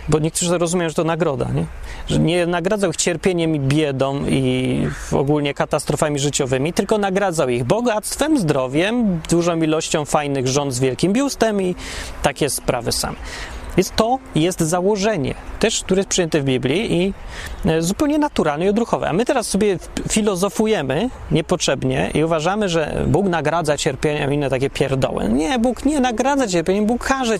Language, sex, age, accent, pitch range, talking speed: Polish, male, 30-49, native, 130-200 Hz, 155 wpm